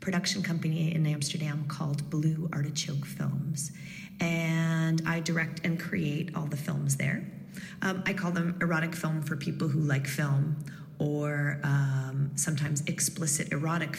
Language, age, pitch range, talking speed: Dutch, 30-49, 145-170 Hz, 140 wpm